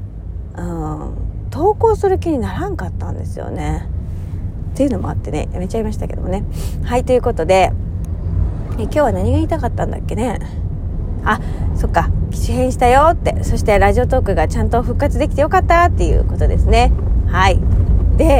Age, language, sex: 30-49, Japanese, female